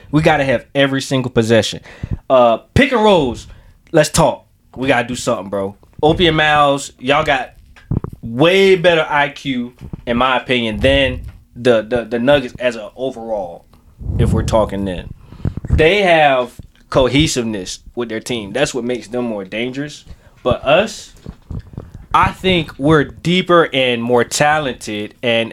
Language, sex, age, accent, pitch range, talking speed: English, male, 20-39, American, 110-145 Hz, 150 wpm